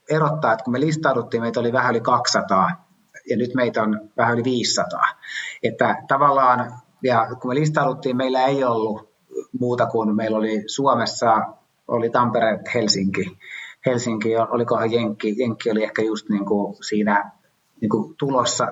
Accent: native